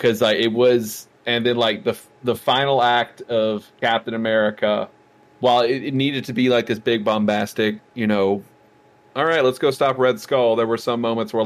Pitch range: 110-125 Hz